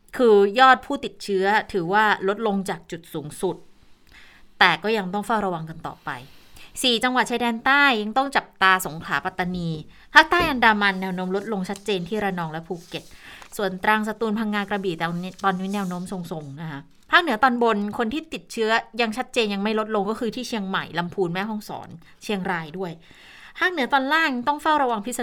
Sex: female